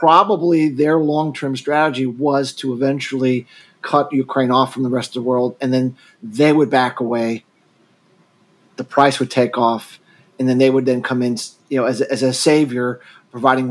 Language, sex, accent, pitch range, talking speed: English, male, American, 130-155 Hz, 180 wpm